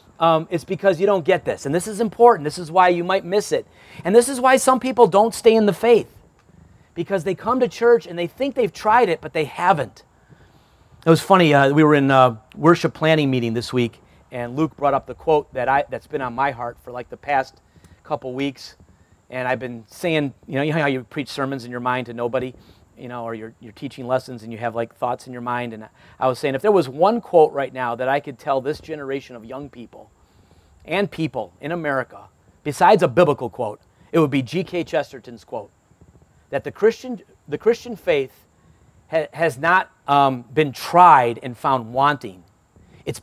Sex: male